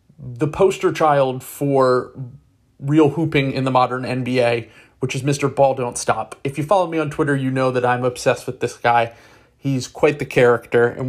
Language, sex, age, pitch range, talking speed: English, male, 30-49, 125-150 Hz, 190 wpm